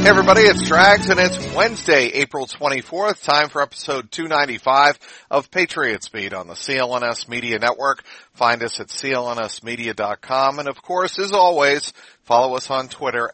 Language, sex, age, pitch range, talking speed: English, male, 50-69, 120-145 Hz, 155 wpm